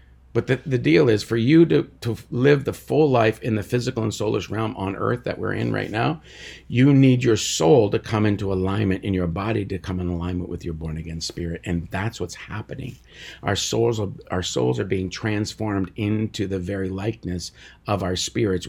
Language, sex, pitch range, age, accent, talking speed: English, male, 80-110 Hz, 50-69, American, 200 wpm